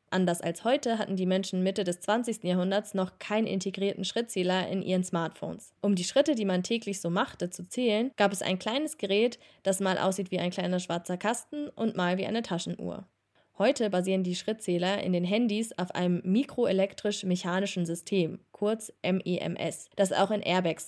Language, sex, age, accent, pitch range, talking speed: German, female, 20-39, German, 180-220 Hz, 180 wpm